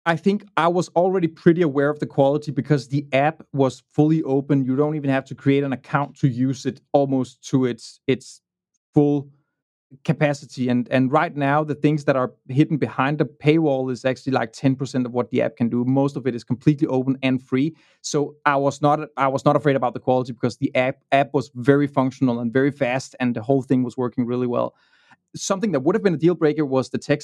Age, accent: 30-49, Danish